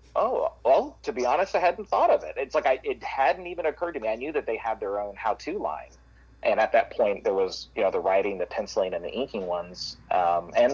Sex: male